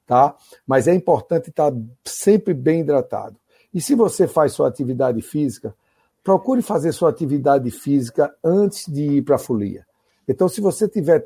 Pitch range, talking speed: 130-165 Hz, 155 wpm